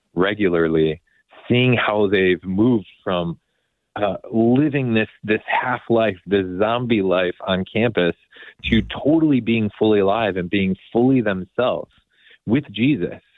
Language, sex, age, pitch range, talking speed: English, male, 30-49, 85-105 Hz, 120 wpm